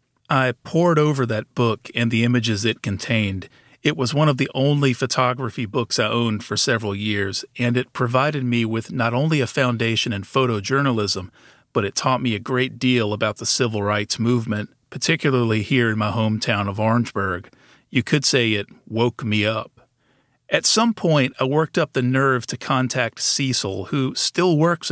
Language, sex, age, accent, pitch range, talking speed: English, male, 40-59, American, 110-130 Hz, 180 wpm